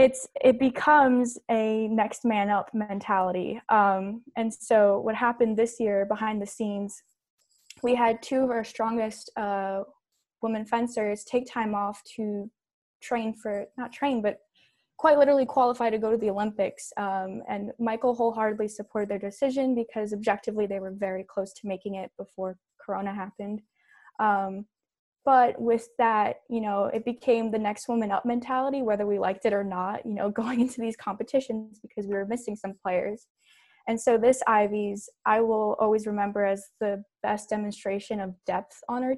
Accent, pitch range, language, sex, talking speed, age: American, 200-235 Hz, English, female, 165 wpm, 10-29